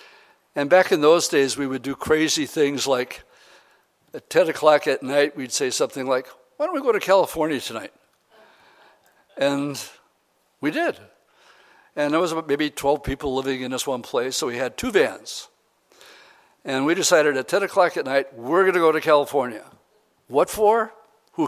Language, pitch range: English, 130-200 Hz